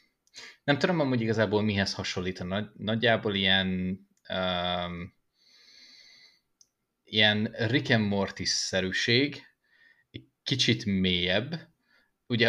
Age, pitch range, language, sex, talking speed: 20-39, 95-115 Hz, Hungarian, male, 85 wpm